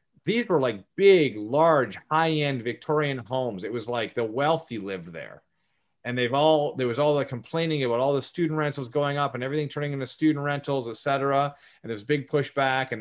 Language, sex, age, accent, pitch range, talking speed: English, male, 30-49, American, 120-150 Hz, 200 wpm